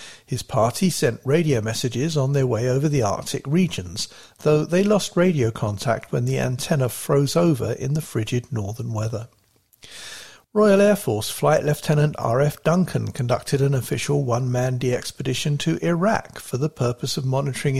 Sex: male